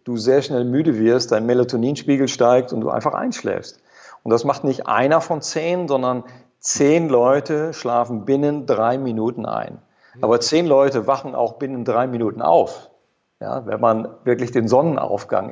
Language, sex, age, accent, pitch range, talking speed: German, male, 50-69, German, 120-145 Hz, 160 wpm